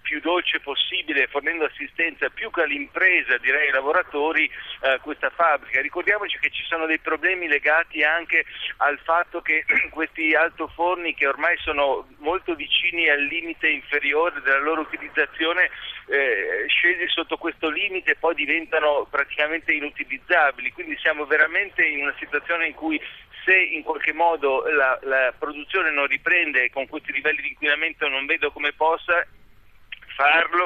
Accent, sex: native, male